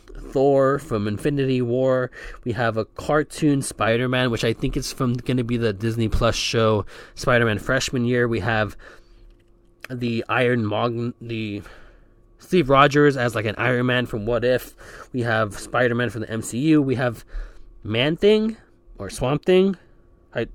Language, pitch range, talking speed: English, 110-135 Hz, 160 wpm